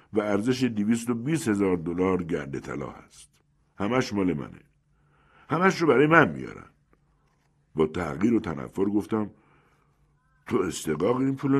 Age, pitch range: 60-79, 90-135 Hz